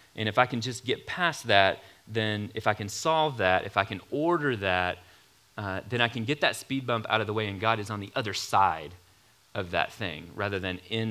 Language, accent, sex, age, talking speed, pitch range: English, American, male, 30-49, 240 wpm, 100-130 Hz